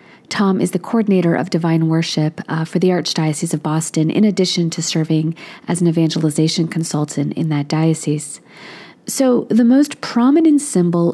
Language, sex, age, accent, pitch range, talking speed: English, female, 40-59, American, 165-225 Hz, 155 wpm